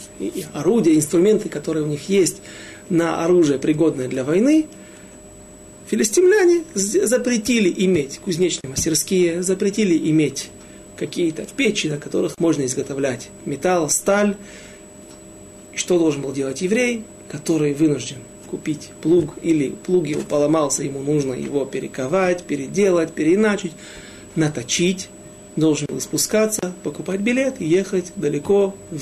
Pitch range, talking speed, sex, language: 145-190 Hz, 115 wpm, male, Russian